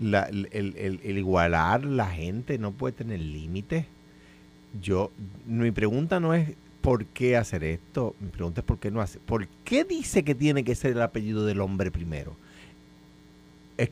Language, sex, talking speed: Spanish, male, 175 wpm